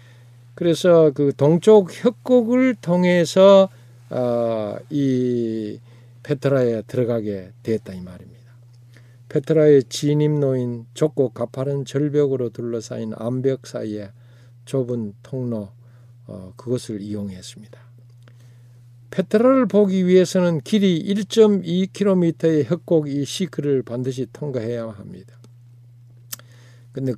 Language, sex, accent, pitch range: Korean, male, native, 120-160 Hz